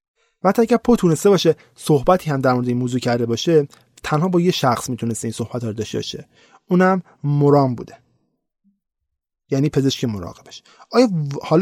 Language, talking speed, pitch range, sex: Persian, 160 wpm, 135-180 Hz, male